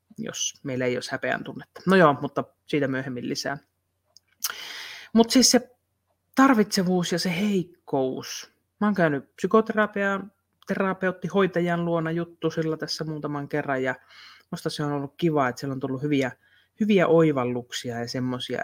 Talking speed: 140 wpm